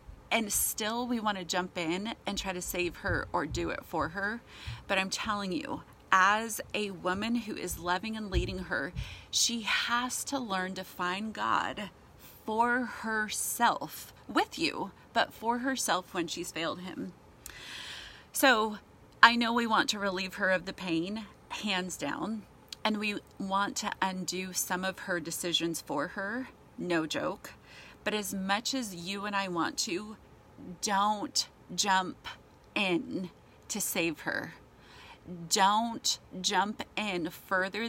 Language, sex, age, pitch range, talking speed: English, female, 30-49, 180-220 Hz, 145 wpm